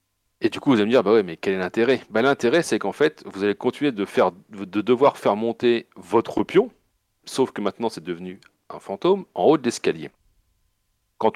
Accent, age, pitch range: French, 40-59, 100-125 Hz